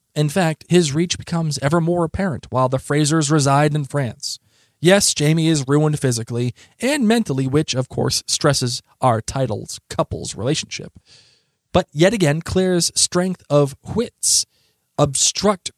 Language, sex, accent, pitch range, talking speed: English, male, American, 125-200 Hz, 140 wpm